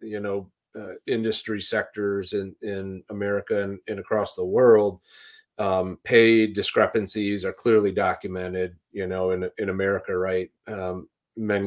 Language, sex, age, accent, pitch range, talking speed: English, male, 30-49, American, 95-115 Hz, 140 wpm